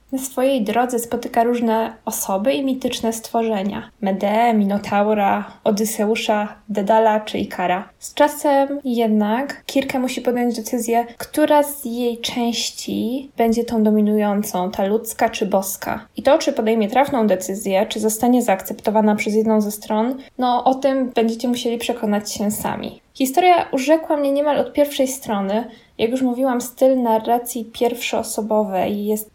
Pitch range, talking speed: 215-255 Hz, 140 wpm